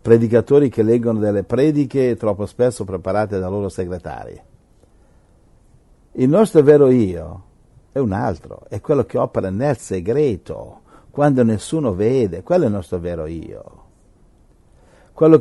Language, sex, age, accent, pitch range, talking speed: Italian, male, 60-79, native, 105-155 Hz, 130 wpm